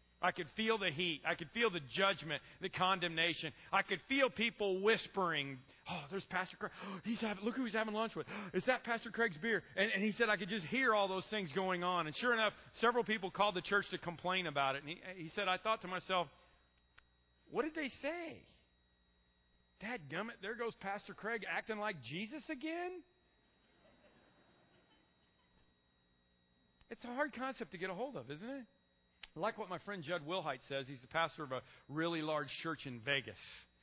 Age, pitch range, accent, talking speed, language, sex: 40-59, 115-190 Hz, American, 195 wpm, English, male